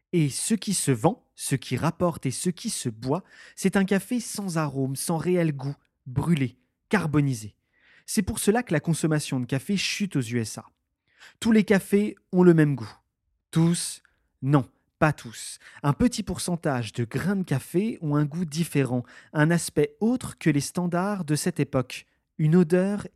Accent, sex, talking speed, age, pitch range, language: French, male, 175 wpm, 30-49, 135-185 Hz, French